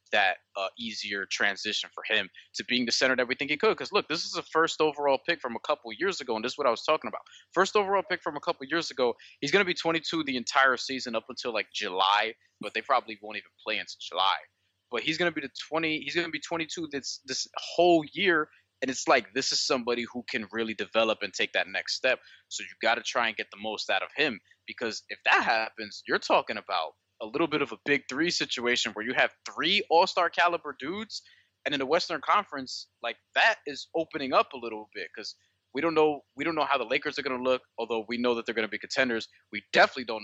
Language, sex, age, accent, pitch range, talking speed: English, male, 20-39, American, 115-165 Hz, 250 wpm